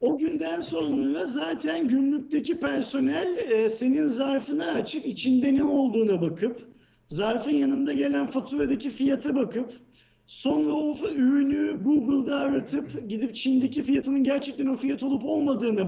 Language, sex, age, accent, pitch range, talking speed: Turkish, male, 50-69, native, 230-290 Hz, 125 wpm